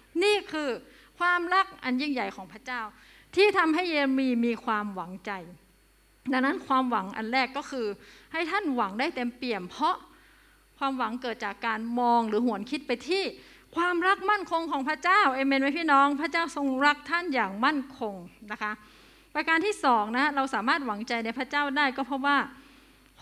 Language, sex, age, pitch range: Thai, female, 30-49, 220-290 Hz